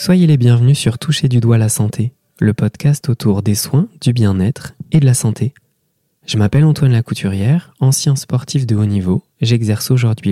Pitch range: 105-130 Hz